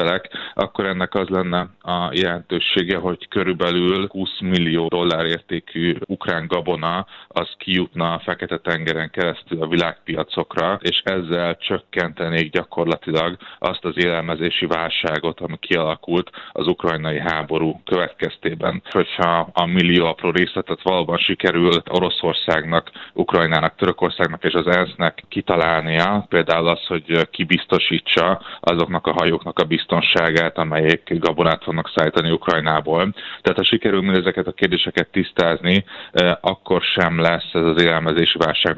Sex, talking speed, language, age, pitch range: male, 120 wpm, Hungarian, 30-49, 80-90 Hz